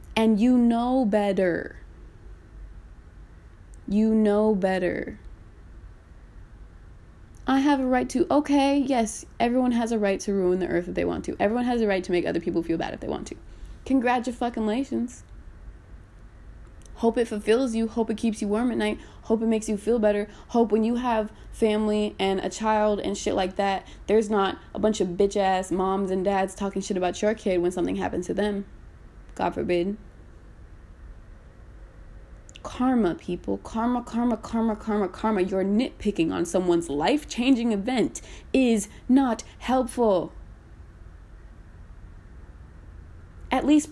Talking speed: 150 wpm